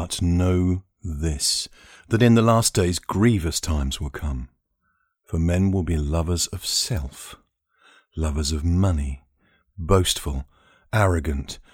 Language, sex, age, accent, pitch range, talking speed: English, male, 50-69, British, 80-110 Hz, 125 wpm